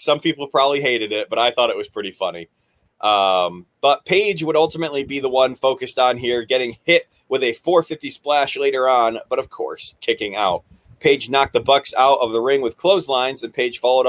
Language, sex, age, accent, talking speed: English, male, 20-39, American, 210 wpm